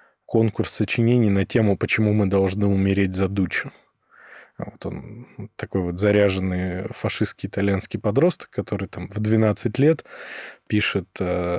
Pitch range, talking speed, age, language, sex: 95-115 Hz, 125 wpm, 20-39, Russian, male